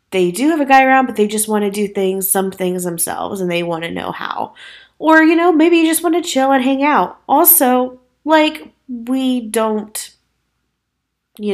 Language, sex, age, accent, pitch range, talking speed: English, female, 20-39, American, 190-245 Hz, 205 wpm